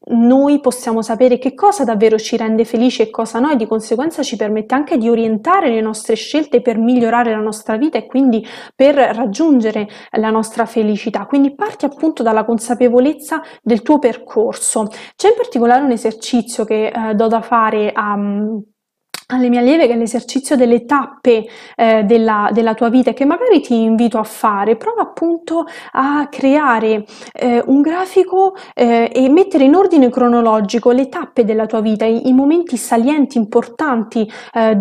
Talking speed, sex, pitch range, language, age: 170 wpm, female, 225-275 Hz, Italian, 20-39